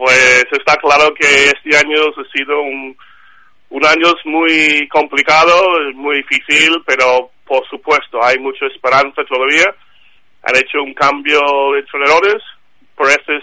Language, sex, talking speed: Spanish, male, 130 wpm